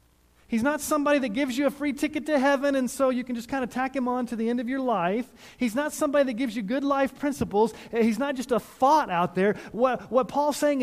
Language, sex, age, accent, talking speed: English, male, 30-49, American, 260 wpm